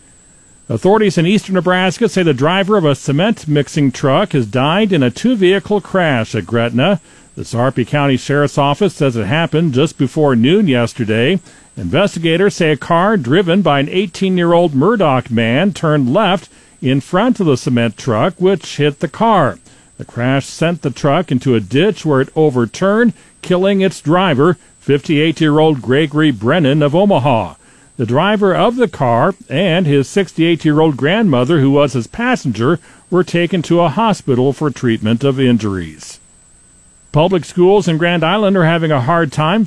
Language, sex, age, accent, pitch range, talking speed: English, male, 50-69, American, 130-180 Hz, 160 wpm